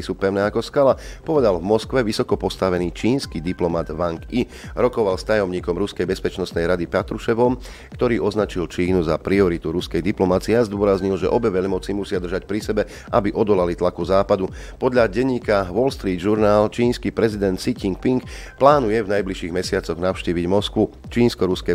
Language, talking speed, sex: Slovak, 150 wpm, male